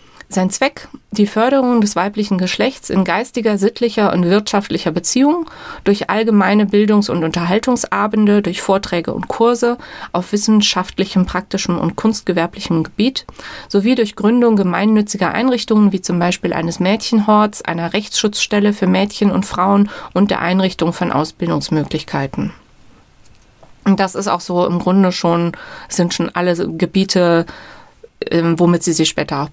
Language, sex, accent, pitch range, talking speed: German, female, German, 175-215 Hz, 135 wpm